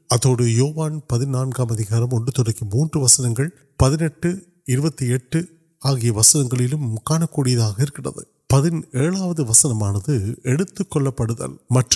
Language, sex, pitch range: Urdu, male, 125-170 Hz